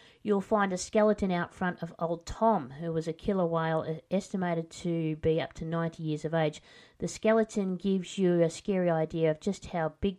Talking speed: 200 wpm